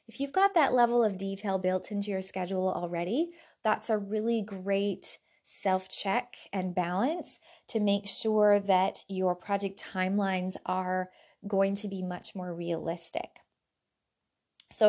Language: English